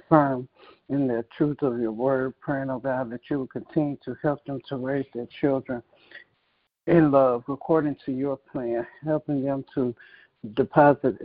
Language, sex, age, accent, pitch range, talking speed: English, male, 60-79, American, 130-145 Hz, 165 wpm